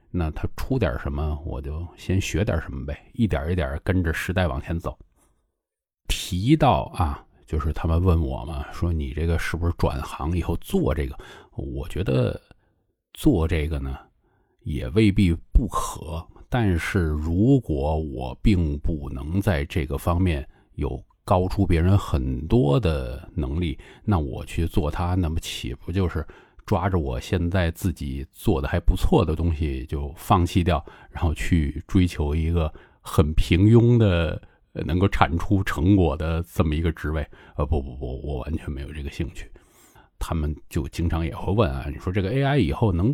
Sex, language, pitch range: male, Chinese, 75-100 Hz